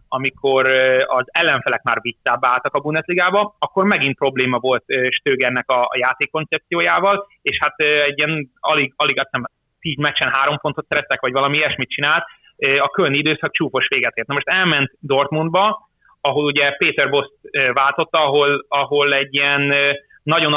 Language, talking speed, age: Hungarian, 150 wpm, 30-49